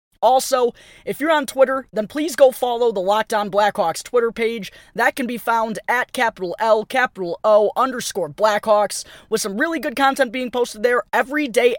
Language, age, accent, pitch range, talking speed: English, 20-39, American, 200-250 Hz, 180 wpm